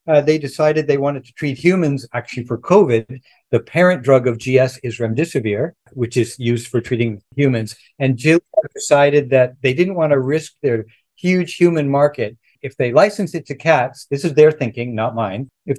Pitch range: 125-155 Hz